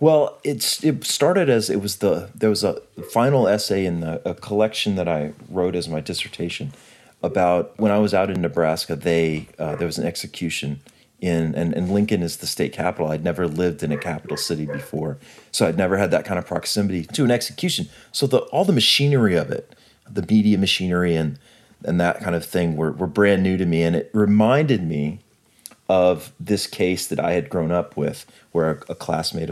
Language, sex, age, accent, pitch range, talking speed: English, male, 30-49, American, 80-100 Hz, 205 wpm